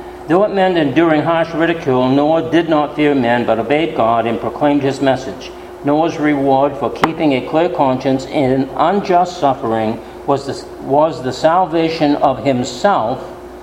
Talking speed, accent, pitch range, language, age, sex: 150 wpm, American, 130-170 Hz, English, 60-79, male